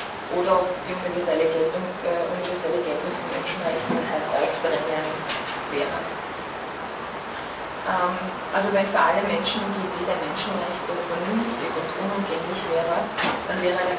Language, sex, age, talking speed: Turkish, female, 20-39, 120 wpm